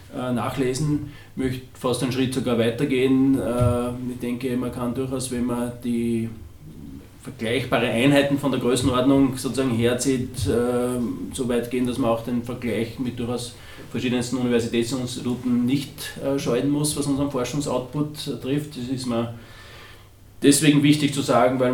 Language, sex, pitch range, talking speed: German, male, 115-130 Hz, 140 wpm